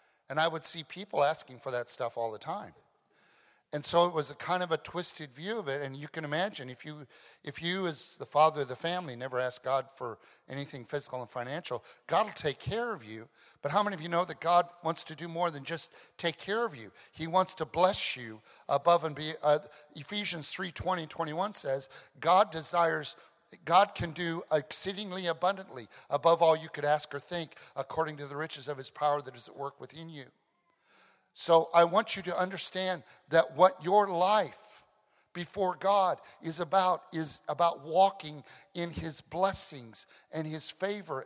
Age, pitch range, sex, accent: 50-69, 145-180 Hz, male, American